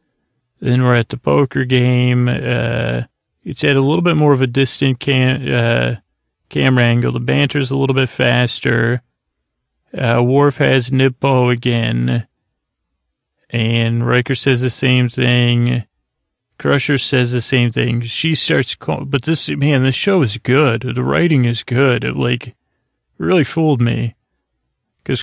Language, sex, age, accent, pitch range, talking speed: English, male, 30-49, American, 115-135 Hz, 150 wpm